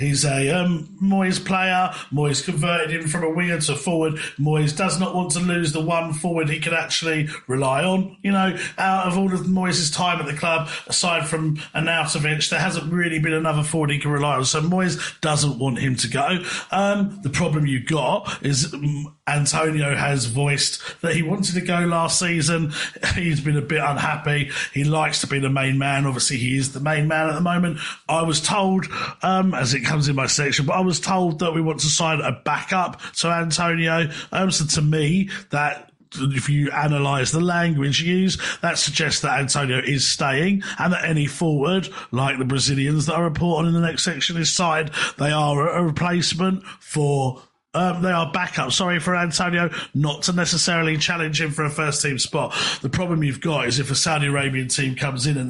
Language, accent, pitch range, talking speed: English, British, 145-175 Hz, 205 wpm